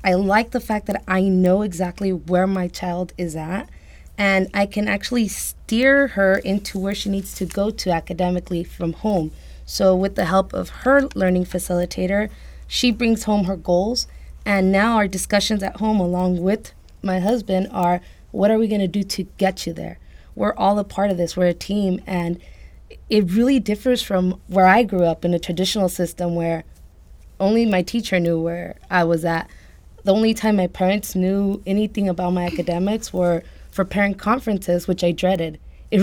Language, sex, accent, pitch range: English, female, American, 180-215 Hz